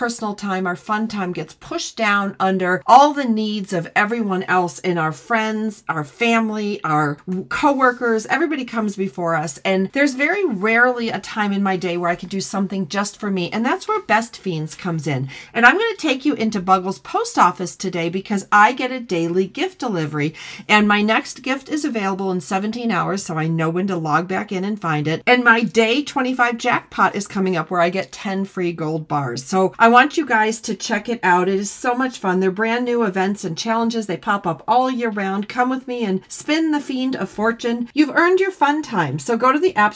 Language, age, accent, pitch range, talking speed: English, 40-59, American, 185-240 Hz, 225 wpm